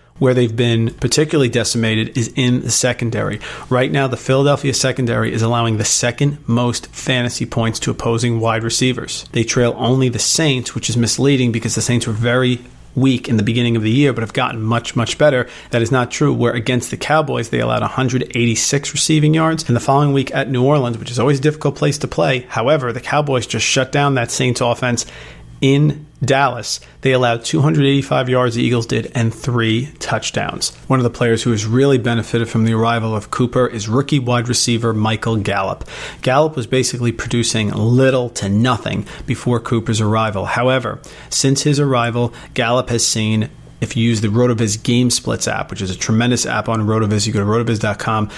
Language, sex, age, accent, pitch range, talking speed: English, male, 40-59, American, 115-130 Hz, 190 wpm